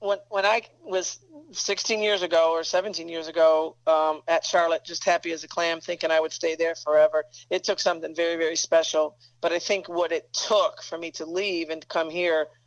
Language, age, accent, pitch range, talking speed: English, 40-59, American, 160-185 Hz, 215 wpm